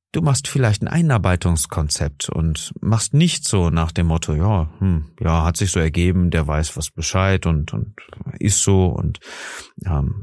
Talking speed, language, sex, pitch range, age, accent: 170 wpm, German, male, 80-100 Hz, 40-59, German